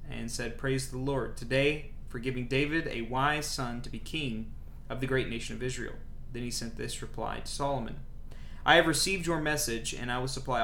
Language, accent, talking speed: English, American, 210 wpm